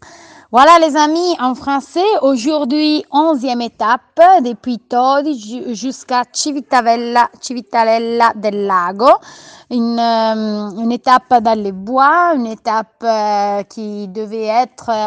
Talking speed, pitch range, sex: 105 wpm, 215-270 Hz, female